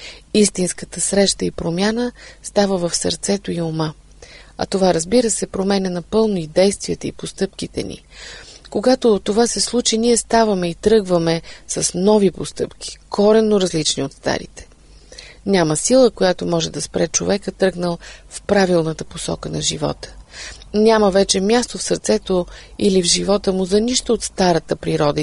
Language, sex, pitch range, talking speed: Bulgarian, female, 165-210 Hz, 145 wpm